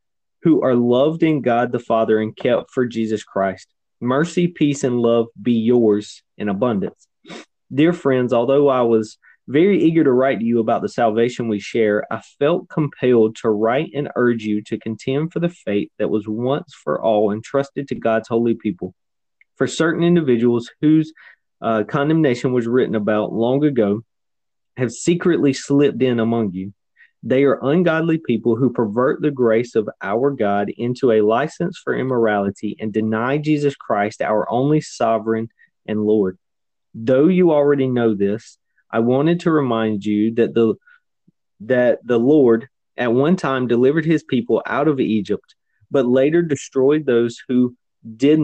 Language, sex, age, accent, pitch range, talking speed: English, male, 20-39, American, 110-140 Hz, 160 wpm